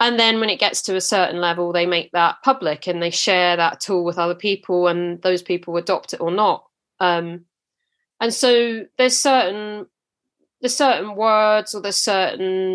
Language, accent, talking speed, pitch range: English, British, 185 wpm, 175-210 Hz